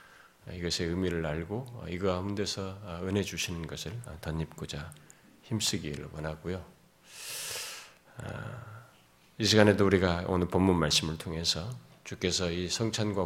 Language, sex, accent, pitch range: Korean, male, native, 80-120 Hz